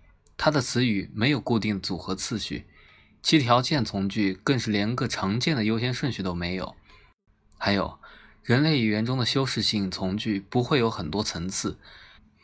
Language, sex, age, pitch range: Chinese, male, 20-39, 100-130 Hz